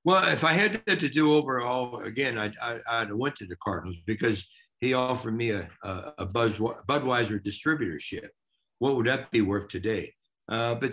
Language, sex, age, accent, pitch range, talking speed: English, male, 60-79, American, 100-125 Hz, 175 wpm